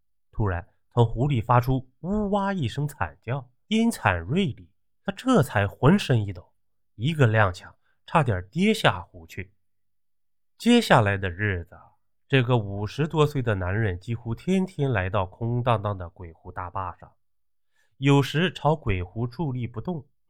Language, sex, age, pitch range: Chinese, male, 20-39, 95-145 Hz